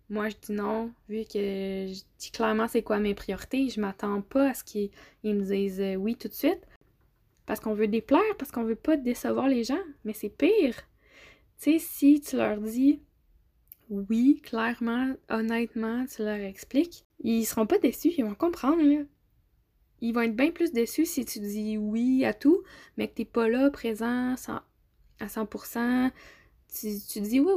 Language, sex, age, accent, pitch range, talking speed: French, female, 10-29, Canadian, 210-260 Hz, 185 wpm